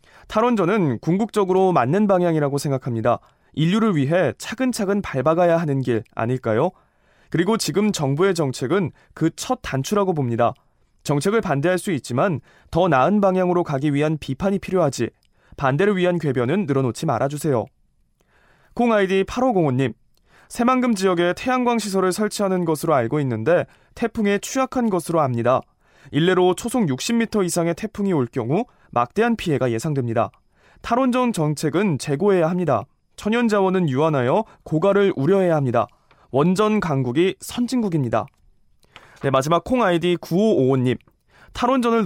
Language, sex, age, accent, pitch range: Korean, male, 20-39, native, 135-200 Hz